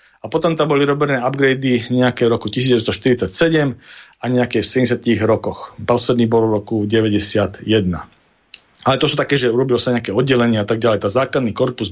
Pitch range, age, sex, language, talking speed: 110-140 Hz, 40-59, male, Slovak, 175 wpm